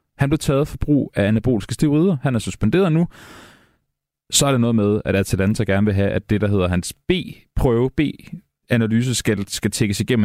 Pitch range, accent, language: 105-140 Hz, native, Danish